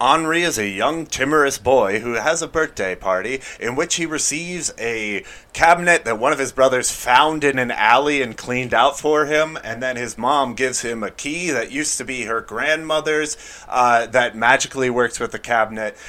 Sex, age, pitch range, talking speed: male, 30-49, 120-150 Hz, 195 wpm